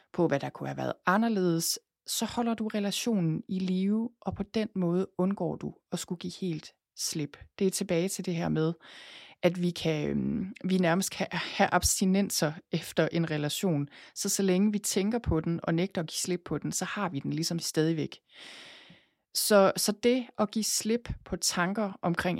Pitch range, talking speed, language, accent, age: 165-200 Hz, 190 wpm, Danish, native, 30-49